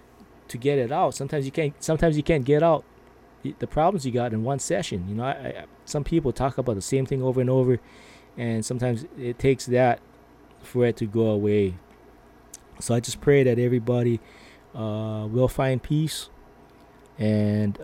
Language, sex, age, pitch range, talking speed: English, male, 20-39, 110-135 Hz, 180 wpm